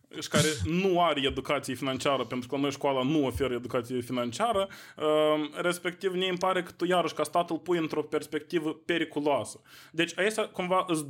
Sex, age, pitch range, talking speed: male, 20-39, 130-165 Hz, 175 wpm